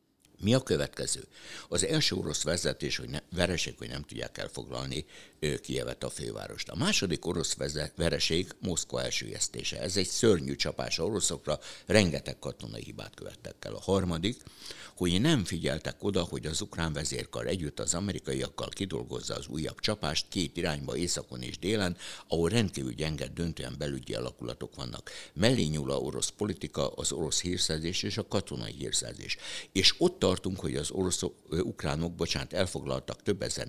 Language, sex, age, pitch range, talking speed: Hungarian, male, 60-79, 70-95 Hz, 150 wpm